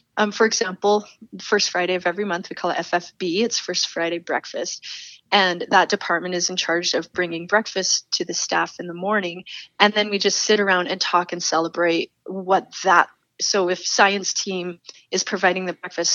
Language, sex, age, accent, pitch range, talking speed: English, female, 30-49, American, 180-225 Hz, 190 wpm